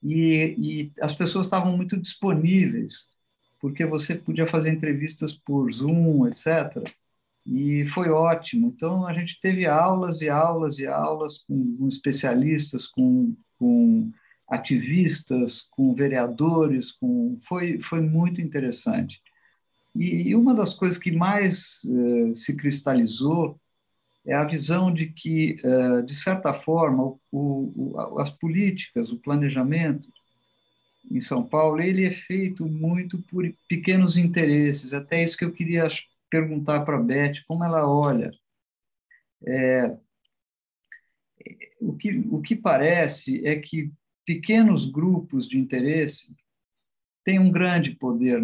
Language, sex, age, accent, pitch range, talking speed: Portuguese, male, 50-69, Brazilian, 140-180 Hz, 125 wpm